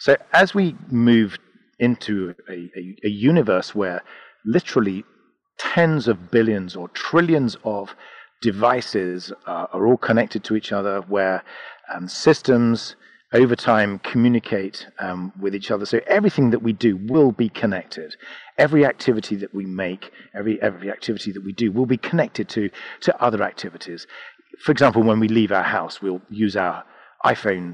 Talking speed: 155 wpm